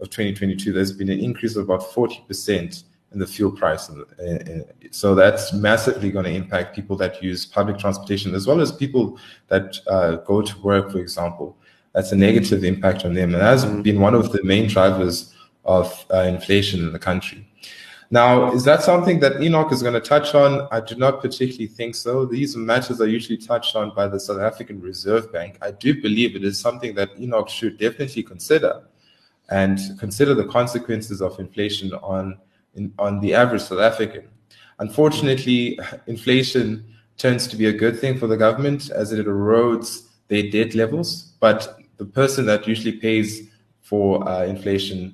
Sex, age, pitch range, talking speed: male, 20-39, 95-115 Hz, 180 wpm